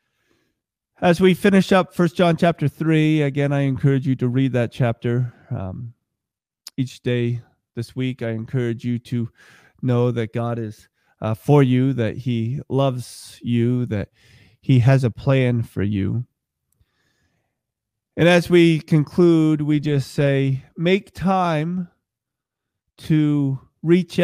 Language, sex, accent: English, male, American